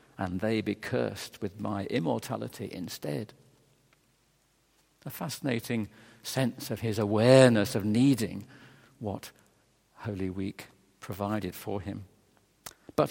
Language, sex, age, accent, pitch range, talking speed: English, male, 50-69, British, 110-145 Hz, 105 wpm